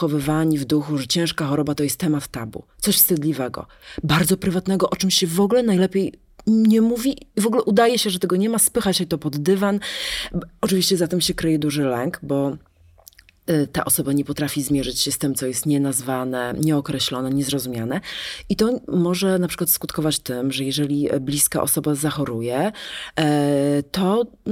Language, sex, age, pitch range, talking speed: Polish, female, 30-49, 145-190 Hz, 170 wpm